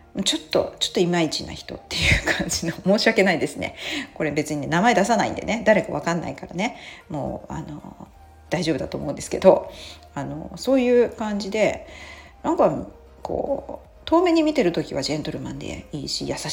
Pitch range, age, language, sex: 140-215 Hz, 40-59, Japanese, female